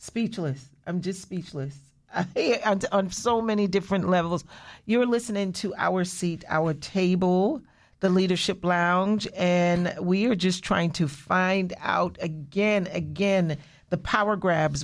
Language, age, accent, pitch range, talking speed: English, 40-59, American, 175-210 Hz, 140 wpm